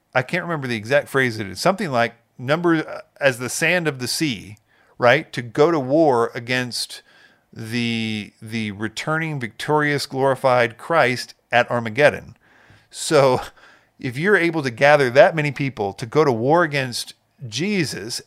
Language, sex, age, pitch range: English, male, 50-69, 115-150 Hz